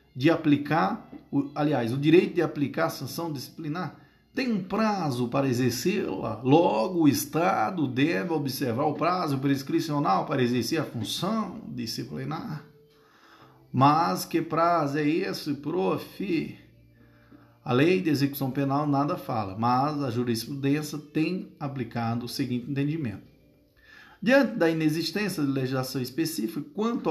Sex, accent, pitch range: male, Brazilian, 125-165 Hz